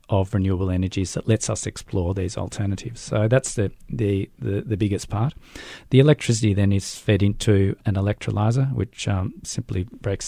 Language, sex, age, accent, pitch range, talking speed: English, male, 40-59, Australian, 100-120 Hz, 170 wpm